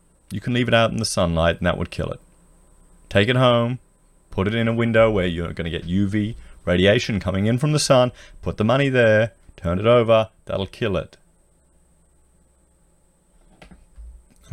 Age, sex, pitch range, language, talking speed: 30-49, male, 85-110 Hz, English, 180 wpm